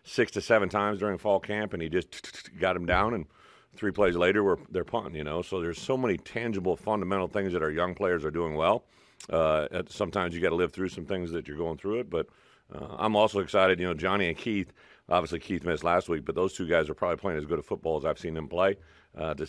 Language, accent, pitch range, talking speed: English, American, 80-95 Hz, 260 wpm